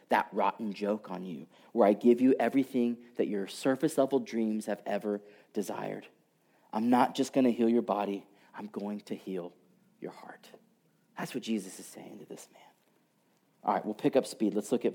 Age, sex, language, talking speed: 30-49, male, English, 195 wpm